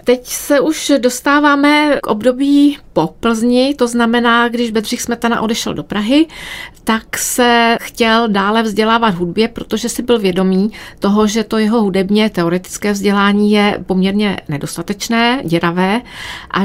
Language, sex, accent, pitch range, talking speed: Czech, female, native, 180-220 Hz, 135 wpm